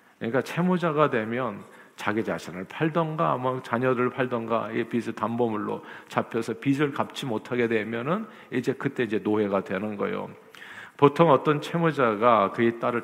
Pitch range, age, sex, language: 115-145 Hz, 50-69, male, Korean